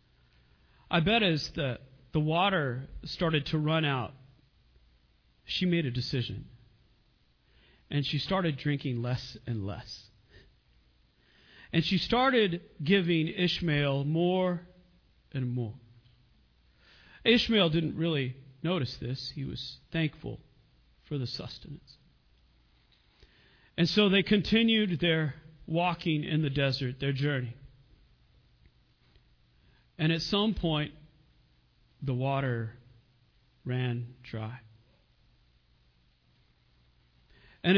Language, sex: English, male